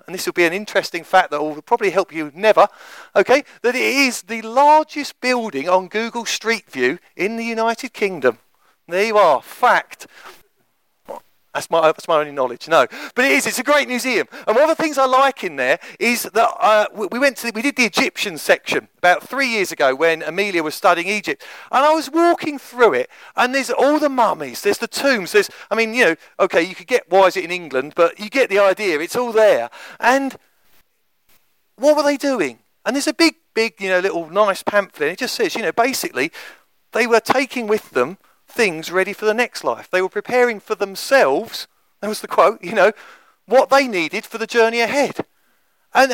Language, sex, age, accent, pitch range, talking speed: English, male, 40-59, British, 195-270 Hz, 210 wpm